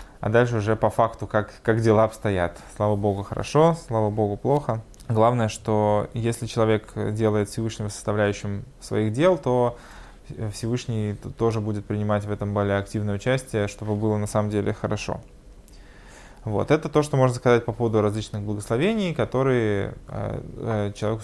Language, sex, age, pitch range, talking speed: Russian, male, 20-39, 105-120 Hz, 145 wpm